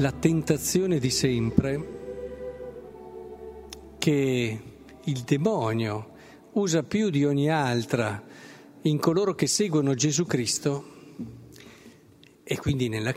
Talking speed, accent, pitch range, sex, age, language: 95 wpm, native, 125-170 Hz, male, 50-69, Italian